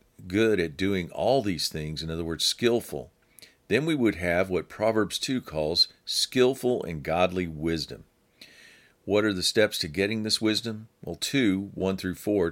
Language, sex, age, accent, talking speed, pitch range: English, male, 50-69, American, 170 wpm, 85-110 Hz